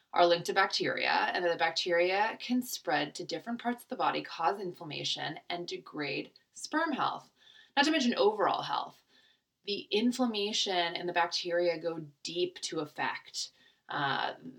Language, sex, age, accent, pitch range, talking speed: English, female, 20-39, American, 175-250 Hz, 155 wpm